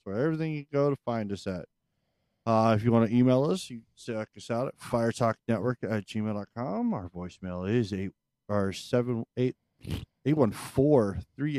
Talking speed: 180 wpm